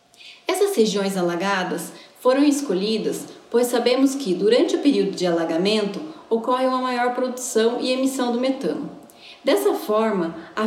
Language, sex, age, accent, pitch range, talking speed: Portuguese, female, 10-29, Brazilian, 200-255 Hz, 135 wpm